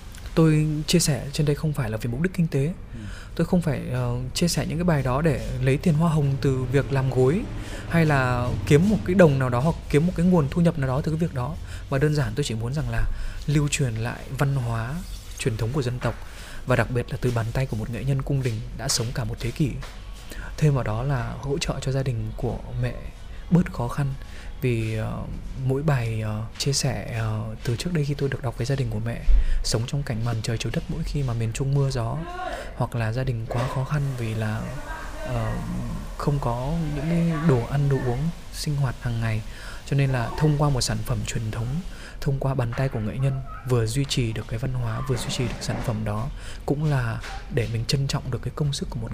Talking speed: 245 wpm